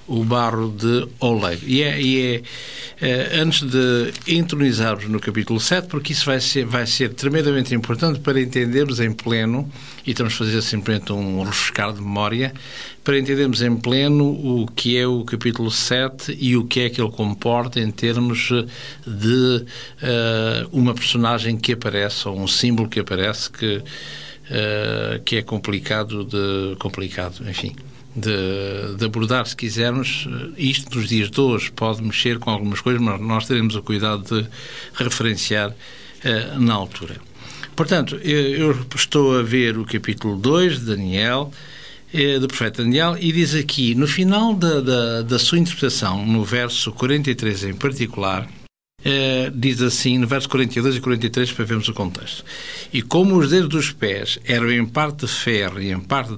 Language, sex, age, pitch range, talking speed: Portuguese, male, 60-79, 110-135 Hz, 160 wpm